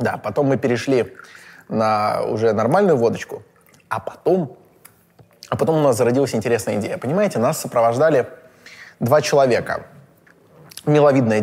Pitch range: 115-150 Hz